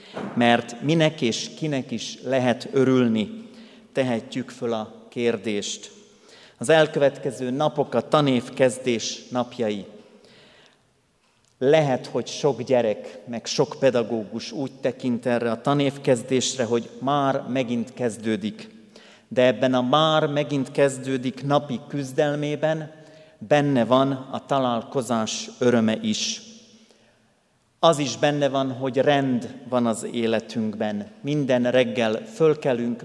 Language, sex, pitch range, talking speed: Hungarian, male, 120-150 Hz, 105 wpm